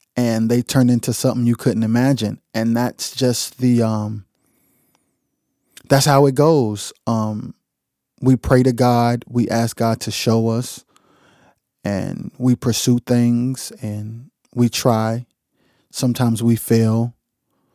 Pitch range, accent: 115-130 Hz, American